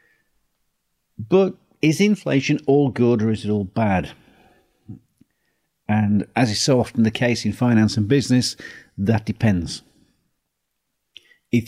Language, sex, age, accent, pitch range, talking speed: English, male, 50-69, British, 105-125 Hz, 125 wpm